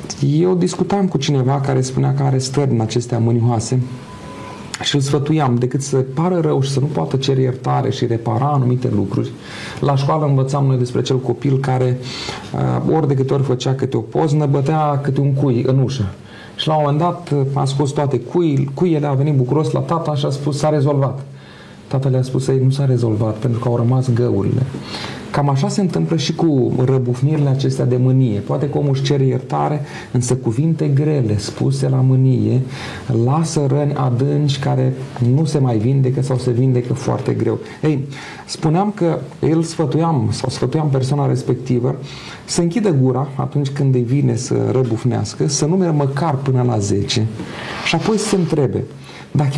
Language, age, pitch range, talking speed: Romanian, 30-49, 125-150 Hz, 180 wpm